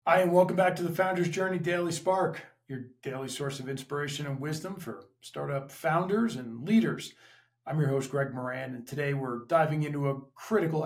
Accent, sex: American, male